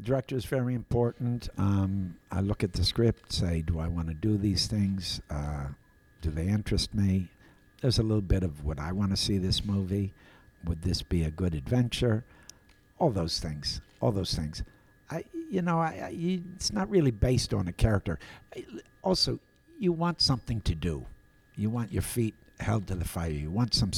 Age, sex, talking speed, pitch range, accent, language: 60-79, male, 195 wpm, 85-110 Hz, American, English